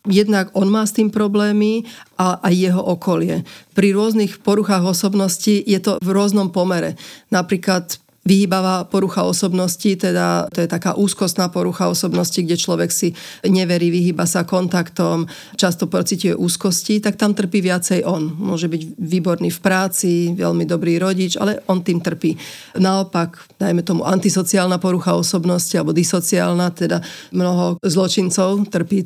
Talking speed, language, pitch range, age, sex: 140 wpm, Slovak, 175-195 Hz, 40-59, female